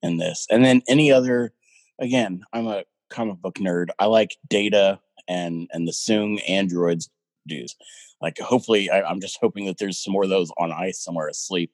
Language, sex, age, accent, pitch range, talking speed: English, male, 30-49, American, 90-115 Hz, 185 wpm